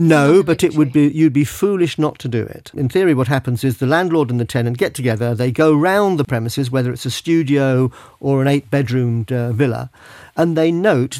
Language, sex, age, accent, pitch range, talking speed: English, male, 50-69, British, 125-155 Hz, 220 wpm